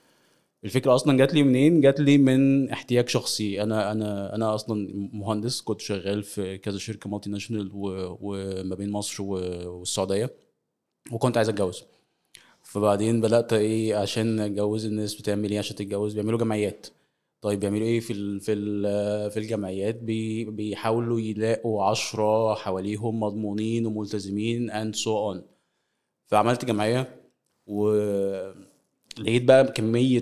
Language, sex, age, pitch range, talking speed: Arabic, male, 20-39, 100-115 Hz, 130 wpm